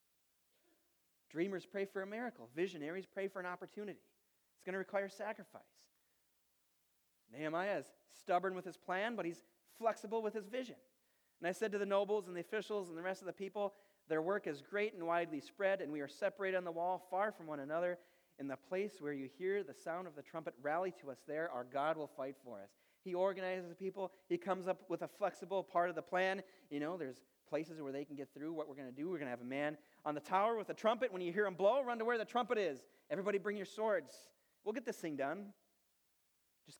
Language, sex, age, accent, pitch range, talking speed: English, male, 40-59, American, 155-205 Hz, 230 wpm